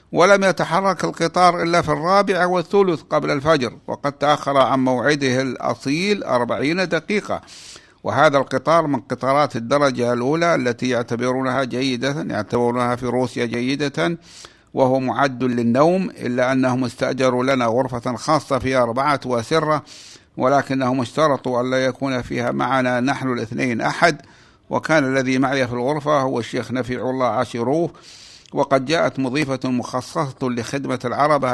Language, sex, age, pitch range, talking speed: Arabic, male, 60-79, 125-150 Hz, 125 wpm